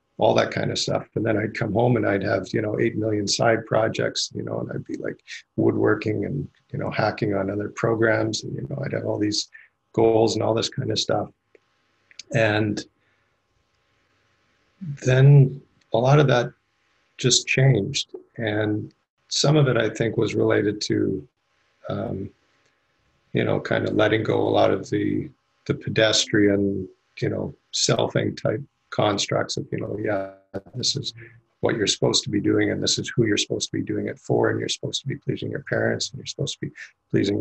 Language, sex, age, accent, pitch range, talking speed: English, male, 50-69, American, 100-120 Hz, 190 wpm